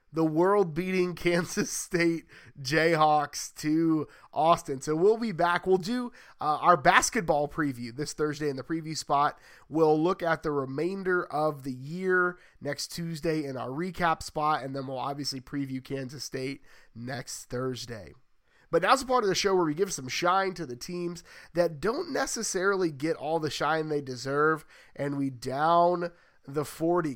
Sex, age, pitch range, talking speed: male, 30-49, 145-180 Hz, 170 wpm